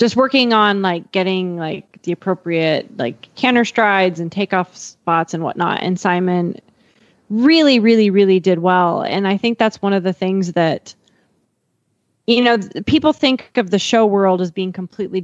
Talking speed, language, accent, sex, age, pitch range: 170 wpm, English, American, female, 20-39, 175-220 Hz